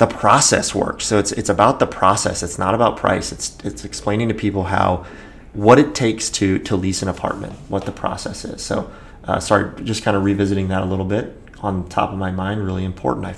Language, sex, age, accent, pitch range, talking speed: English, male, 30-49, American, 90-105 Hz, 230 wpm